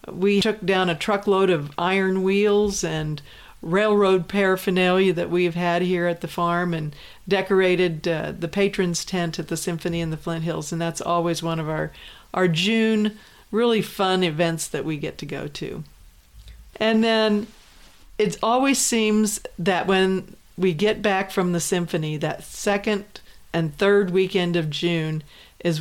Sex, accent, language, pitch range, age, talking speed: female, American, English, 165-195 Hz, 50-69, 160 wpm